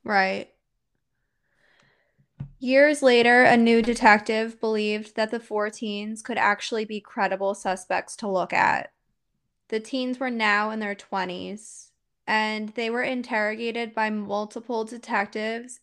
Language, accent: English, American